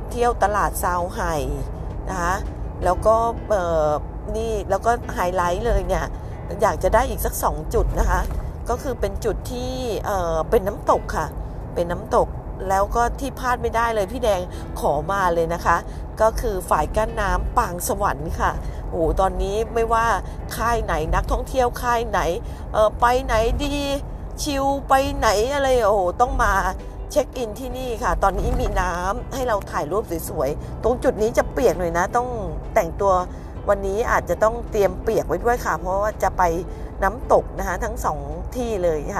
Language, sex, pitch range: Thai, female, 180-240 Hz